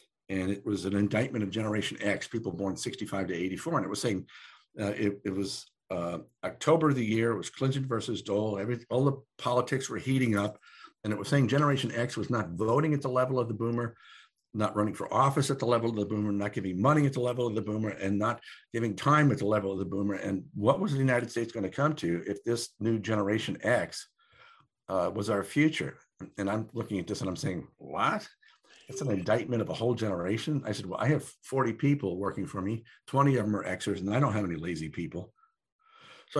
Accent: American